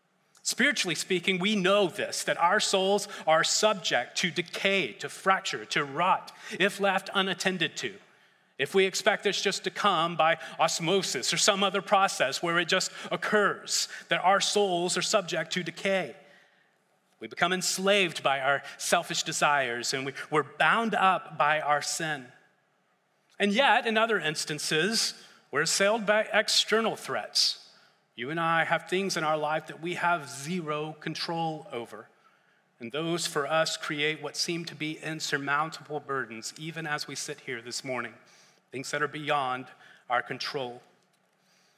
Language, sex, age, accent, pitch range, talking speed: English, male, 30-49, American, 150-195 Hz, 150 wpm